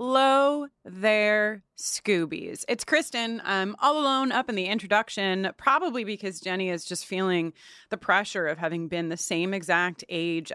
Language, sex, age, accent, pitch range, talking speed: English, female, 30-49, American, 175-255 Hz, 155 wpm